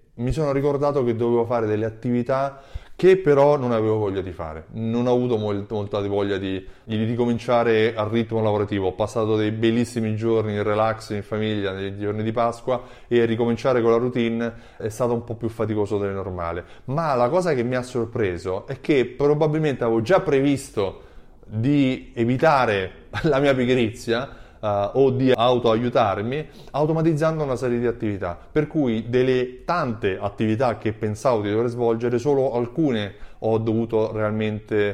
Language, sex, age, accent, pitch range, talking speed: Italian, male, 20-39, native, 110-130 Hz, 165 wpm